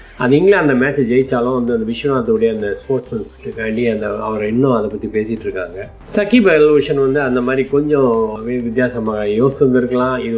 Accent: native